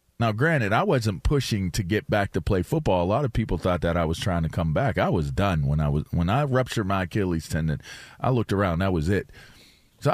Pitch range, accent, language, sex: 90-125 Hz, American, English, male